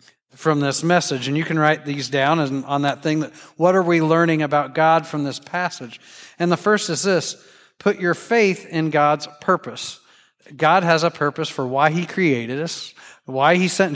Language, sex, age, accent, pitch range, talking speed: English, male, 40-59, American, 155-200 Hz, 195 wpm